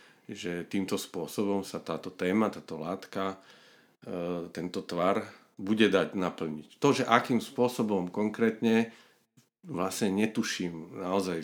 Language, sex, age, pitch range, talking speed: Slovak, male, 50-69, 85-110 Hz, 110 wpm